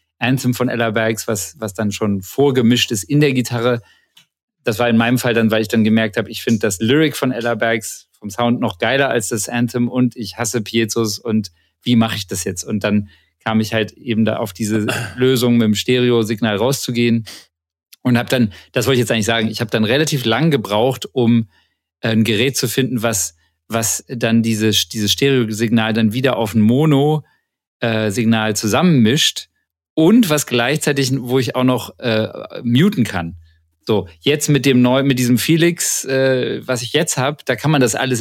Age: 40-59